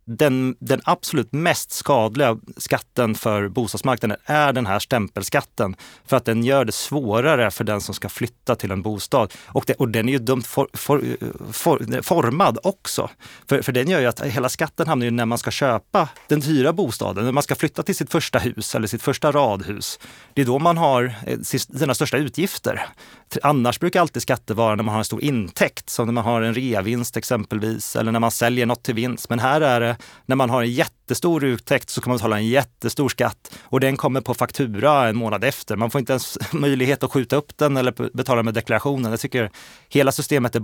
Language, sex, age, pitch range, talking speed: Swedish, male, 30-49, 115-140 Hz, 210 wpm